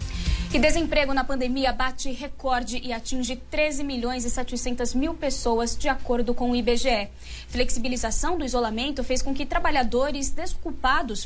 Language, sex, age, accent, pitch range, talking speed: English, female, 10-29, Brazilian, 240-295 Hz, 145 wpm